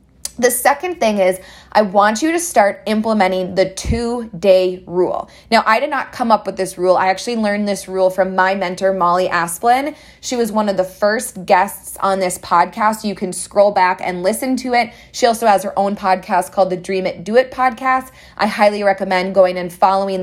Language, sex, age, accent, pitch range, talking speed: English, female, 20-39, American, 185-235 Hz, 210 wpm